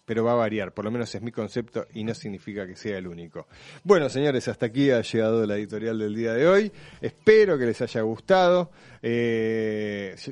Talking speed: 205 wpm